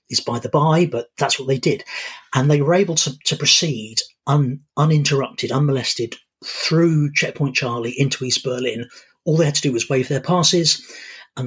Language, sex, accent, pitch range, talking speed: English, male, British, 130-155 Hz, 185 wpm